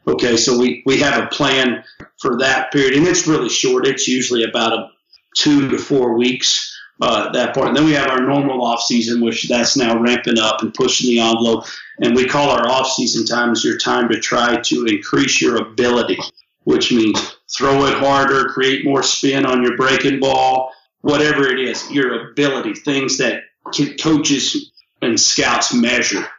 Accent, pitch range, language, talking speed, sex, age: American, 120-140 Hz, English, 175 wpm, male, 40-59